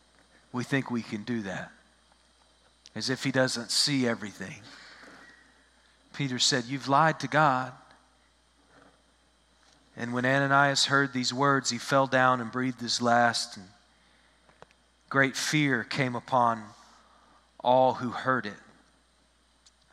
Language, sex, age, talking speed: English, male, 40-59, 120 wpm